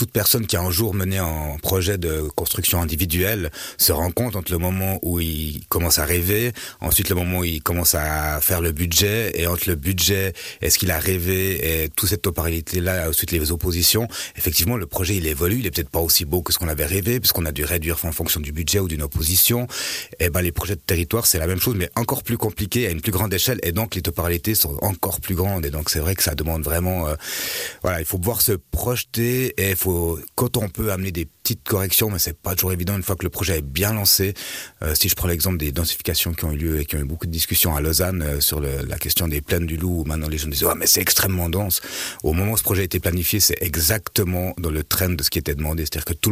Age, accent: 30-49, French